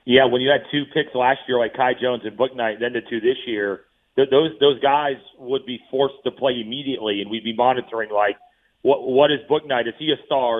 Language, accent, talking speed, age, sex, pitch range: English, American, 225 wpm, 40-59, male, 115-140 Hz